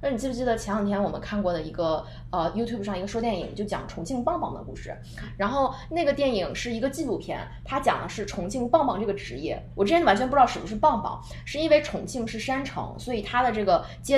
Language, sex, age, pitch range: Chinese, female, 20-39, 195-290 Hz